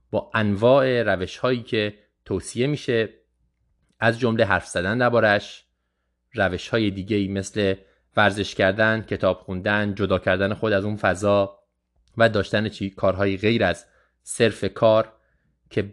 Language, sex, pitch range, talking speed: Persian, male, 90-120 Hz, 125 wpm